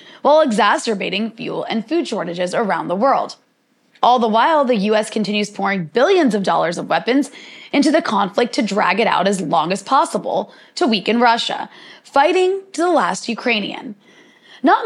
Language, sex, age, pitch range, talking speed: English, female, 20-39, 210-325 Hz, 165 wpm